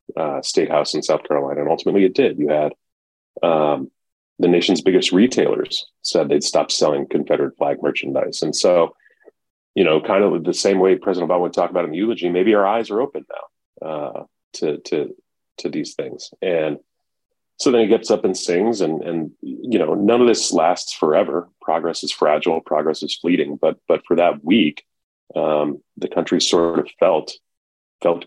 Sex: male